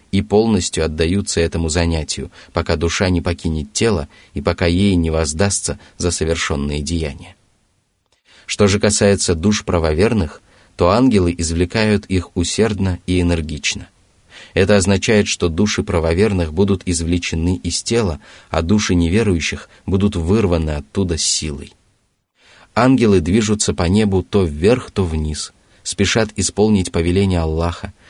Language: Russian